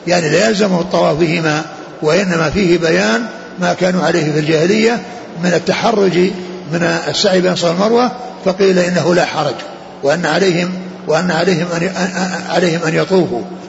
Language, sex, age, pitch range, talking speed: Arabic, male, 60-79, 160-185 Hz, 135 wpm